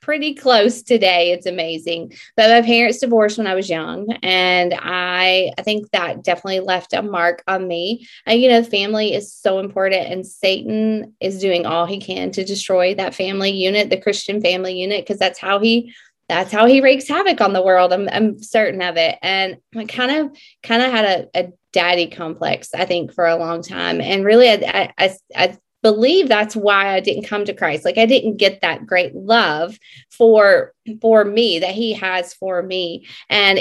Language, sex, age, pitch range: English, female, 20-39, 180-220 Hz